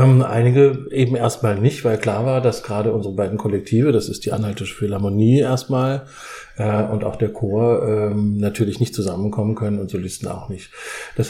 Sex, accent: male, German